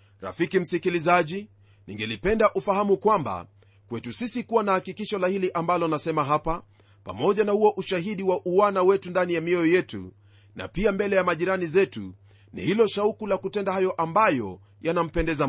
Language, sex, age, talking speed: Swahili, male, 30-49, 155 wpm